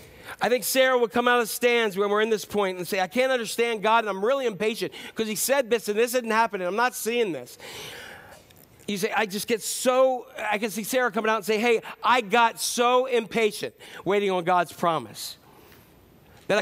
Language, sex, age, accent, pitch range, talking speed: English, male, 40-59, American, 140-215 Hz, 215 wpm